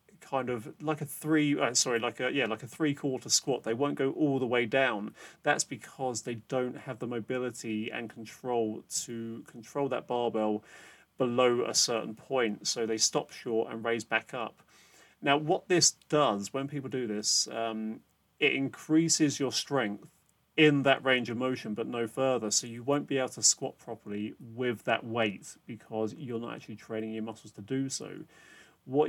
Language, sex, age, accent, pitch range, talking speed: English, male, 30-49, British, 115-135 Hz, 180 wpm